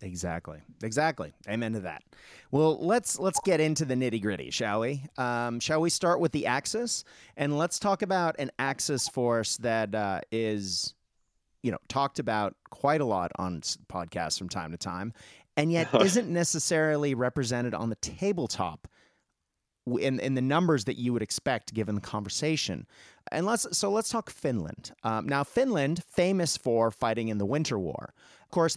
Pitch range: 100-155 Hz